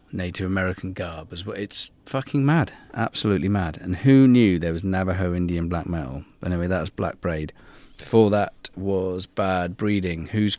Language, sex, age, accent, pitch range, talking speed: English, male, 40-59, British, 90-115 Hz, 170 wpm